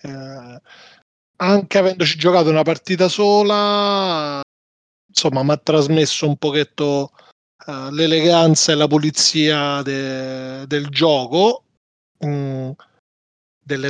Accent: native